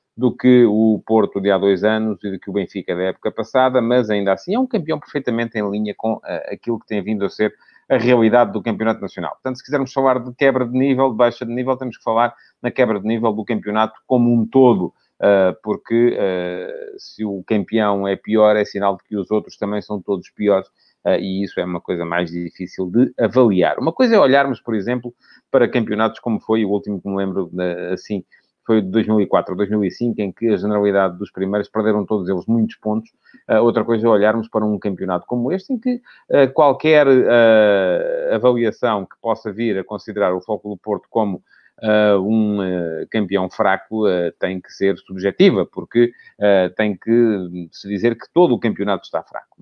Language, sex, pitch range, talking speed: English, male, 100-125 Hz, 200 wpm